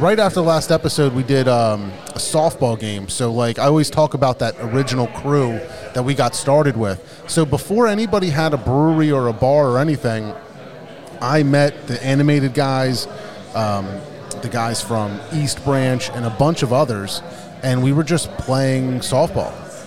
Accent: American